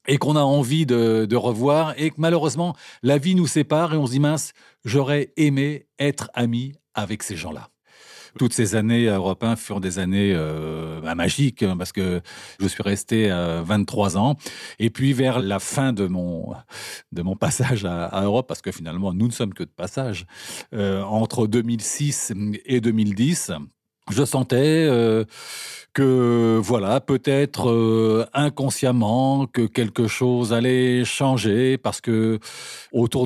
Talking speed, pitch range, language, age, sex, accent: 155 wpm, 105-130 Hz, French, 40-59, male, French